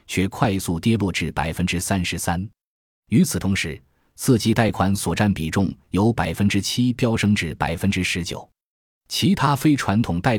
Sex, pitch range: male, 85-115 Hz